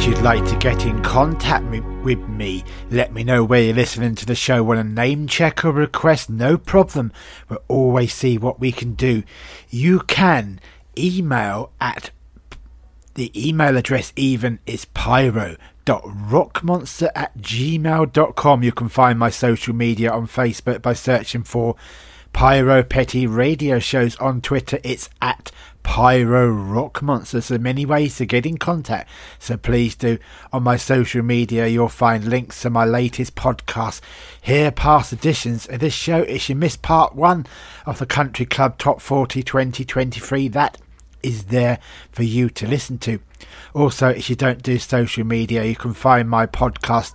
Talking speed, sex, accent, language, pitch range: 160 wpm, male, British, English, 115-135 Hz